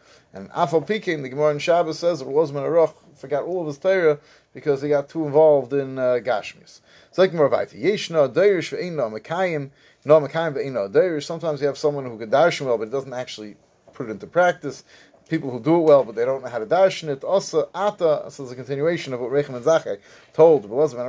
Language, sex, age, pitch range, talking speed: English, male, 30-49, 135-175 Hz, 220 wpm